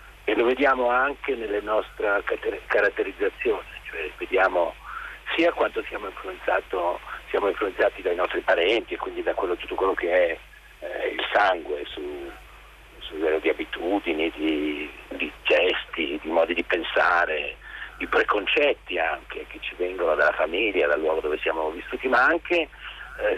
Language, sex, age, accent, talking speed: Italian, male, 50-69, native, 145 wpm